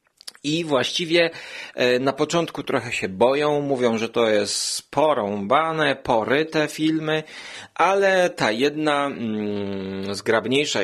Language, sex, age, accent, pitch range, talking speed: Polish, male, 30-49, native, 120-155 Hz, 100 wpm